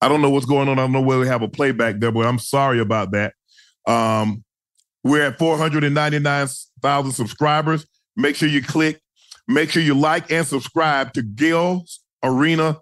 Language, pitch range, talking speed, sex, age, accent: English, 130-155 Hz, 180 wpm, male, 40-59, American